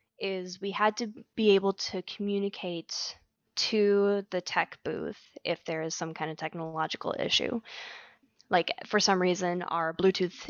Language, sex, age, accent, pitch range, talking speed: English, female, 20-39, American, 175-210 Hz, 150 wpm